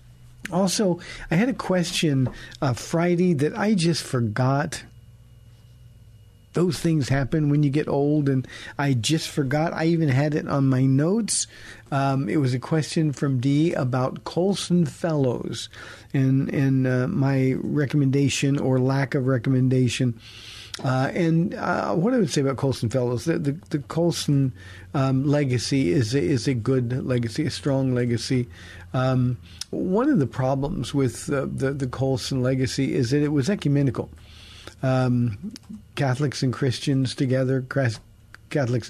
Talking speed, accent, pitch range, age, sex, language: 150 wpm, American, 125-150 Hz, 50-69, male, English